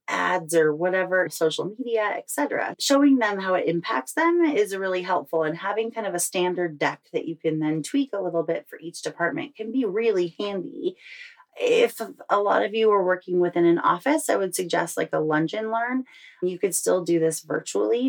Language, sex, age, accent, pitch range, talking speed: English, female, 30-49, American, 145-200 Hz, 205 wpm